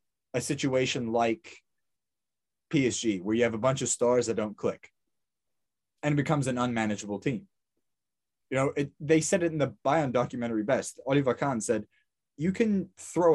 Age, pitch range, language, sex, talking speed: 20-39, 120-160 Hz, English, male, 160 wpm